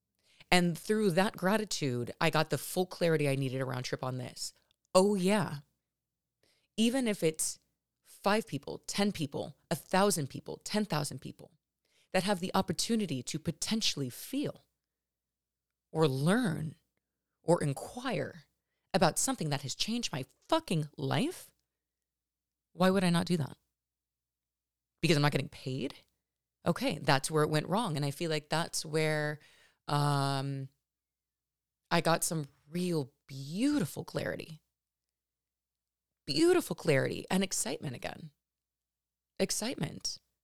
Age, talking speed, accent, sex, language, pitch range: 30-49, 125 wpm, American, female, English, 135-190 Hz